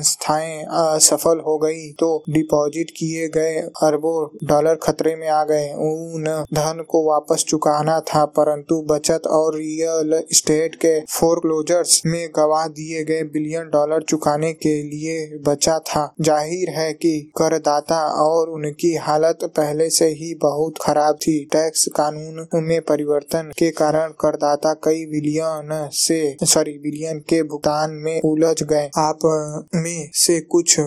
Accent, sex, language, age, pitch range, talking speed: native, male, Hindi, 20-39, 150-165 Hz, 140 wpm